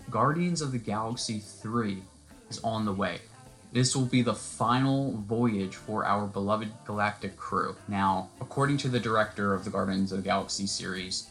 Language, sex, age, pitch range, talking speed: English, male, 20-39, 100-120 Hz, 170 wpm